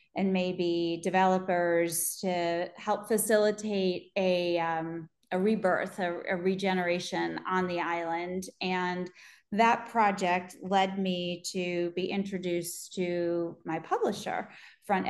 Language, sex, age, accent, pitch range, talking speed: English, female, 30-49, American, 175-200 Hz, 110 wpm